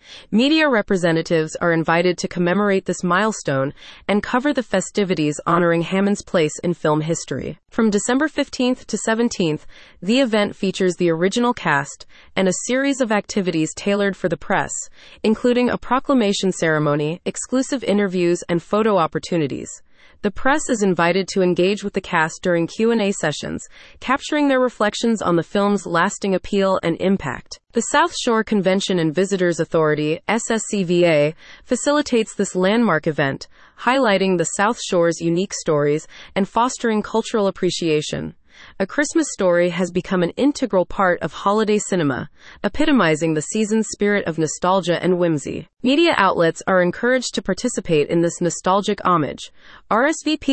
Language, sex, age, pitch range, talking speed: English, female, 30-49, 170-225 Hz, 145 wpm